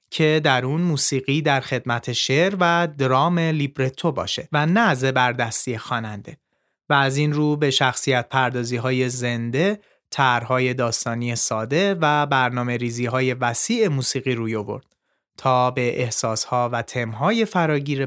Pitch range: 125-175 Hz